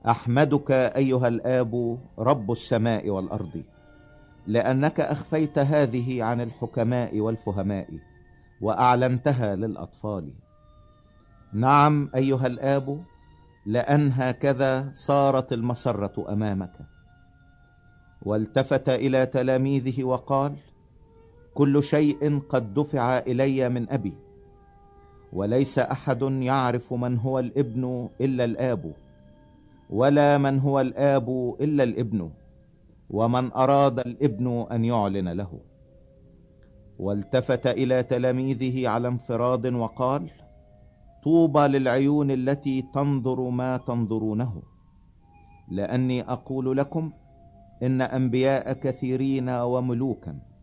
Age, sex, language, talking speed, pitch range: 50-69, male, Italian, 85 wpm, 105-135 Hz